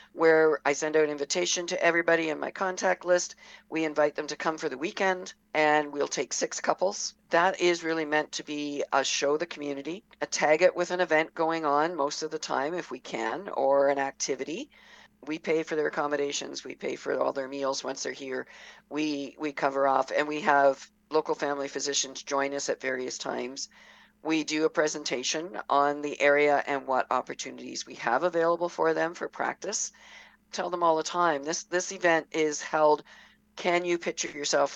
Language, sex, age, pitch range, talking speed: English, female, 50-69, 140-165 Hz, 195 wpm